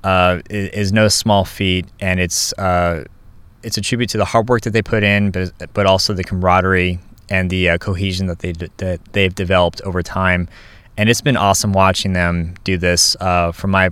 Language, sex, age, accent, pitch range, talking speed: English, male, 20-39, American, 90-105 Hz, 200 wpm